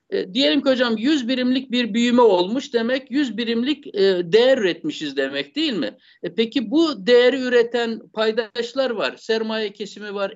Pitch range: 205-265 Hz